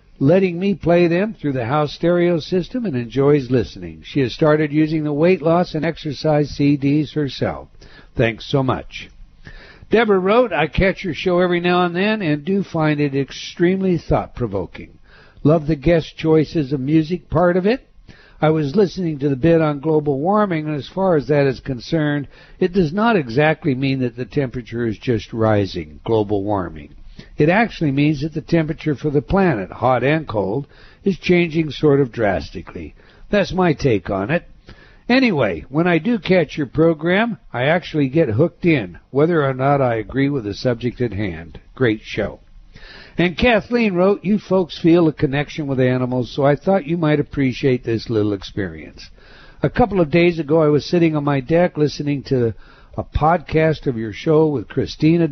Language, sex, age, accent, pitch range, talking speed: English, male, 60-79, American, 130-170 Hz, 180 wpm